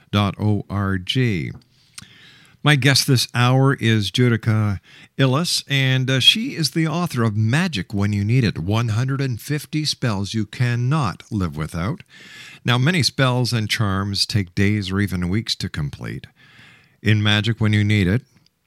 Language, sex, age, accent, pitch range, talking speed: English, male, 50-69, American, 105-140 Hz, 140 wpm